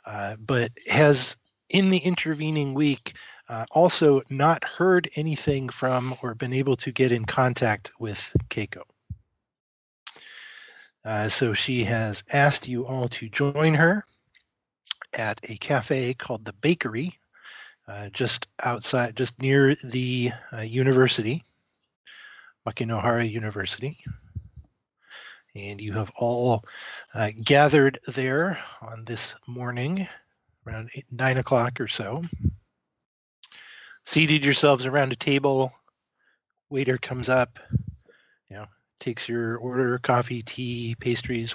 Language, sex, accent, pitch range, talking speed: English, male, American, 110-135 Hz, 115 wpm